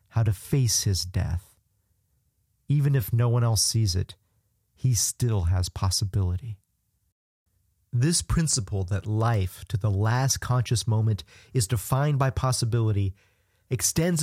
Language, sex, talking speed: English, male, 120 wpm